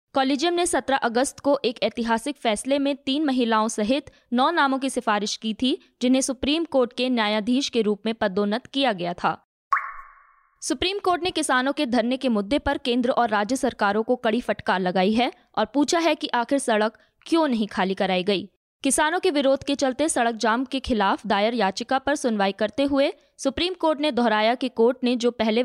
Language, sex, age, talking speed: Hindi, female, 20-39, 195 wpm